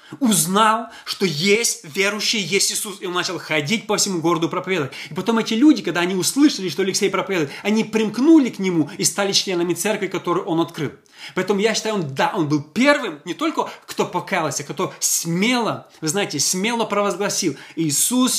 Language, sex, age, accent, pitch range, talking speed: Russian, male, 20-39, native, 165-220 Hz, 175 wpm